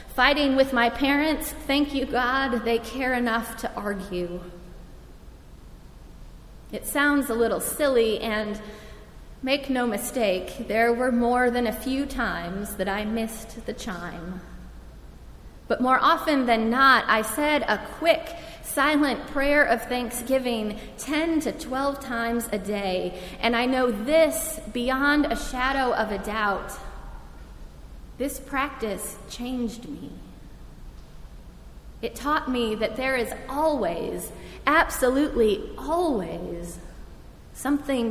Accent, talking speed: American, 120 wpm